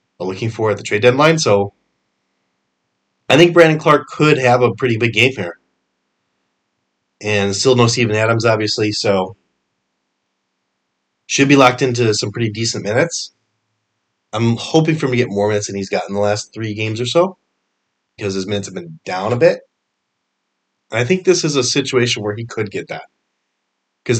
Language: English